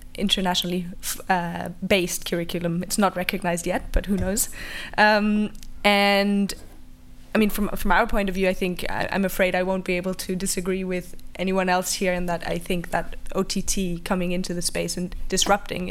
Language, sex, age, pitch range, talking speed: English, female, 20-39, 180-200 Hz, 175 wpm